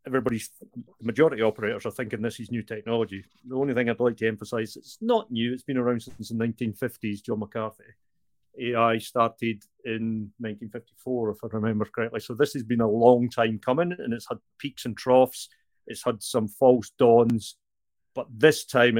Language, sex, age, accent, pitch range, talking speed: English, male, 40-59, British, 110-125 Hz, 180 wpm